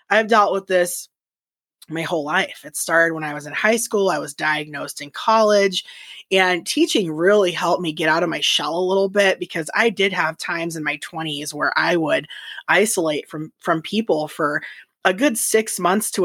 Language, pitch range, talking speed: English, 175-255 Hz, 200 wpm